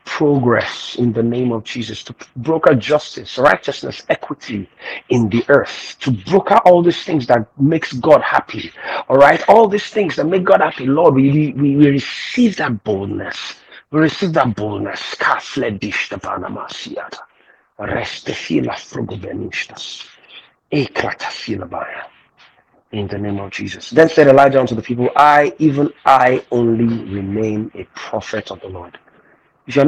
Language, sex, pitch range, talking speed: English, male, 115-145 Hz, 135 wpm